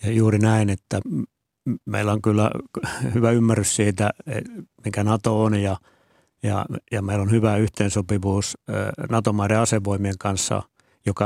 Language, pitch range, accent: Finnish, 100-115 Hz, native